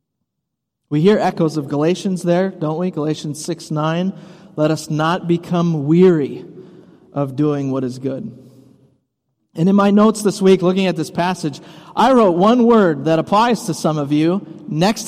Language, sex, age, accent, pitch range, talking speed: English, male, 30-49, American, 145-190 Hz, 165 wpm